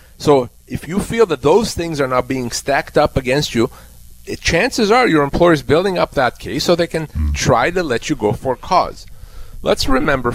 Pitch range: 110-155 Hz